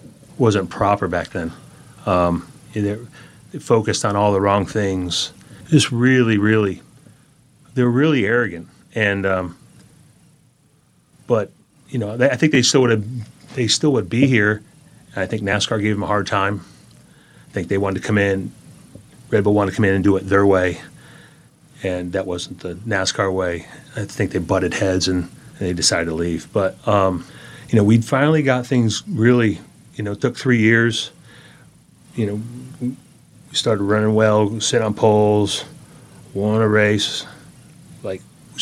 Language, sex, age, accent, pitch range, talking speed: English, male, 30-49, American, 95-120 Hz, 170 wpm